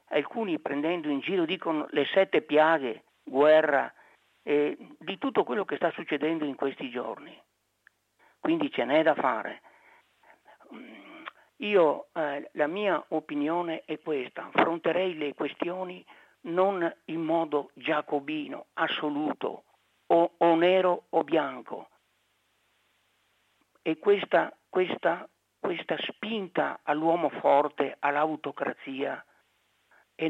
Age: 50-69